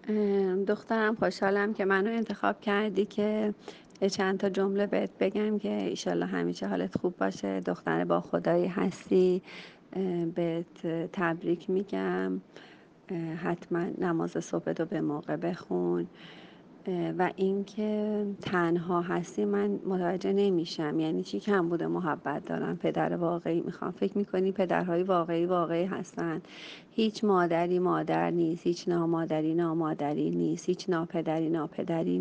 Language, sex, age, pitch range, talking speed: Persian, female, 40-59, 170-195 Hz, 125 wpm